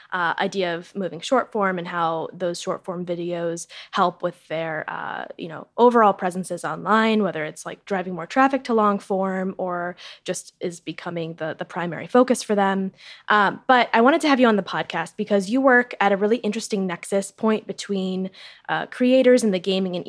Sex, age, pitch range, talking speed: female, 10-29, 180-220 Hz, 195 wpm